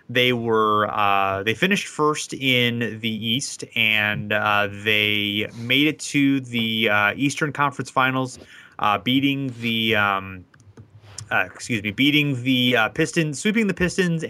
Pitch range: 110-145 Hz